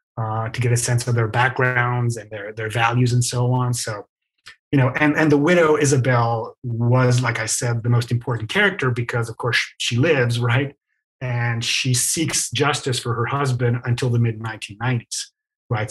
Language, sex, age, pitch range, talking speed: English, male, 30-49, 120-140 Hz, 180 wpm